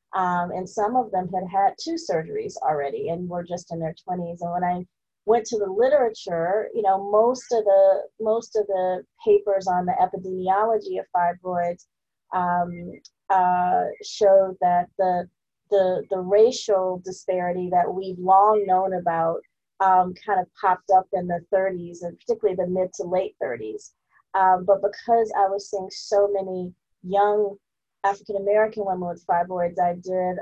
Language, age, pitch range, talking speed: English, 30-49, 180-205 Hz, 160 wpm